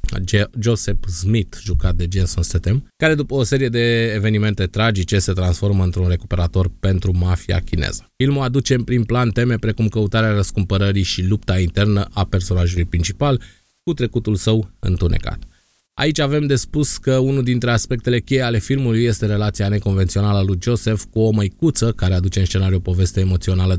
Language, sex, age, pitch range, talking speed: Romanian, male, 20-39, 95-120 Hz, 165 wpm